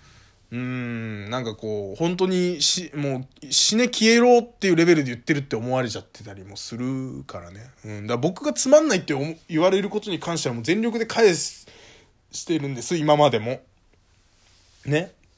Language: Japanese